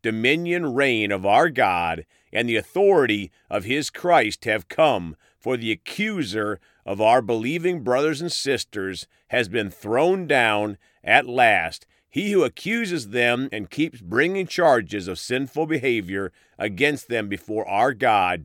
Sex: male